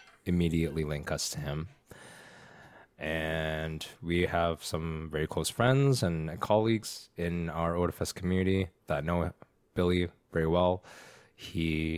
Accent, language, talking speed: American, English, 120 wpm